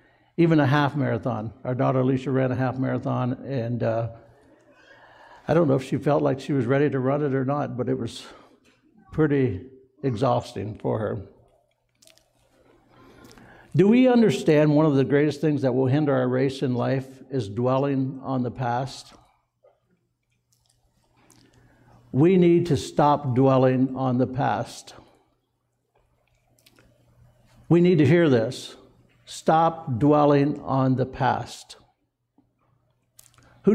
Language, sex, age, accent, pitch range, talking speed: English, male, 60-79, American, 125-145 Hz, 130 wpm